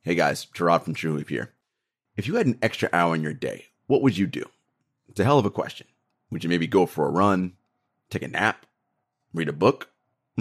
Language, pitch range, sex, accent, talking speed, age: English, 85-120 Hz, male, American, 225 wpm, 30-49